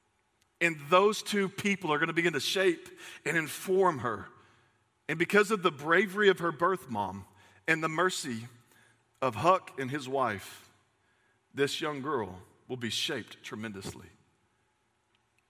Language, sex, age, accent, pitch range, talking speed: English, male, 40-59, American, 125-180 Hz, 145 wpm